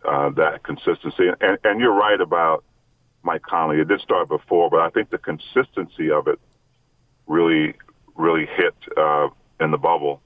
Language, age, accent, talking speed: English, 40-59, American, 170 wpm